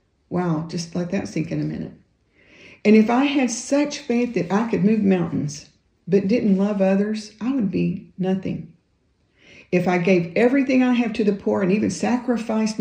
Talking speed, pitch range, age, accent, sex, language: 185 wpm, 175-220 Hz, 50-69, American, female, English